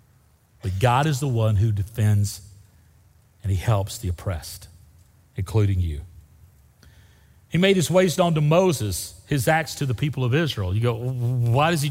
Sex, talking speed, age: male, 160 wpm, 40-59